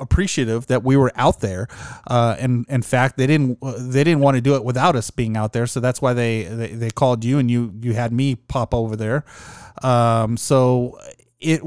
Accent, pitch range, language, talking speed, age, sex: American, 115-140 Hz, English, 215 wpm, 20-39, male